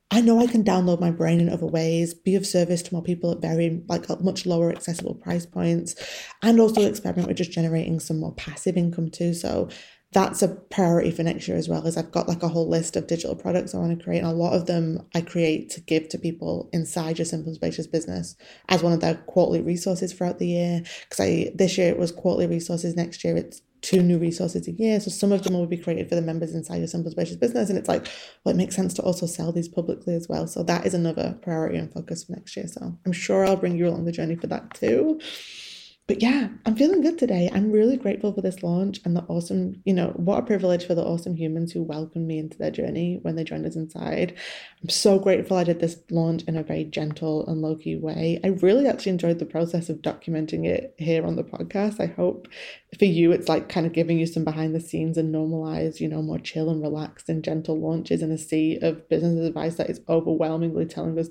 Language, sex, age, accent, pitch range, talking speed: English, female, 20-39, British, 165-180 Hz, 240 wpm